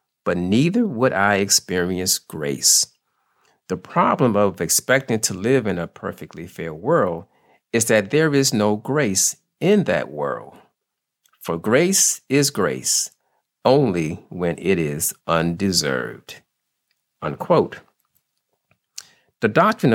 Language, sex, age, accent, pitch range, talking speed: English, male, 50-69, American, 85-130 Hz, 110 wpm